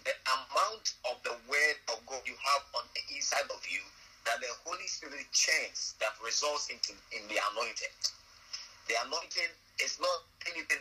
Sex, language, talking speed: male, English, 165 wpm